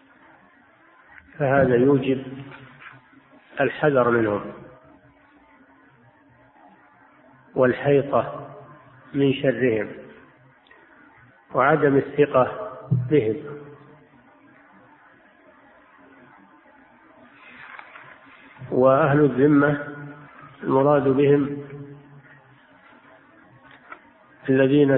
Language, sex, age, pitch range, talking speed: Arabic, male, 50-69, 125-145 Hz, 35 wpm